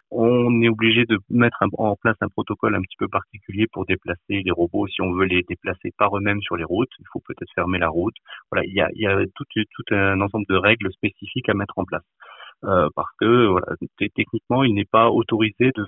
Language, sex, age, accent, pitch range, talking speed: French, male, 30-49, French, 100-125 Hz, 235 wpm